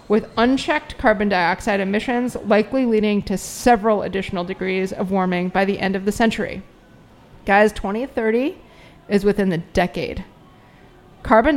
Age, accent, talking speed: 30-49, American, 135 wpm